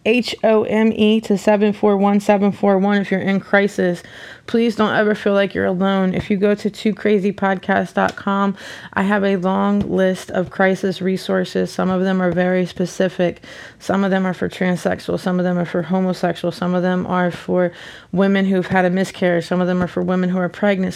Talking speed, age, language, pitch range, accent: 200 wpm, 20-39, English, 180-195 Hz, American